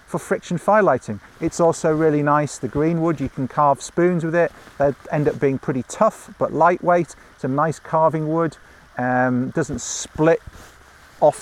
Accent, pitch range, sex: British, 130-165 Hz, male